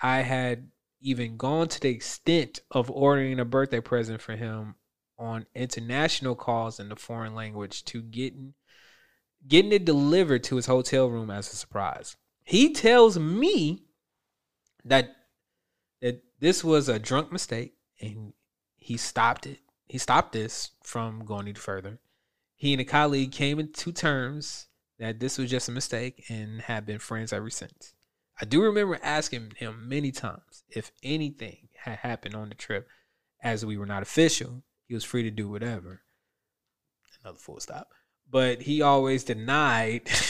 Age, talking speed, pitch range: 20-39, 155 wpm, 115-140 Hz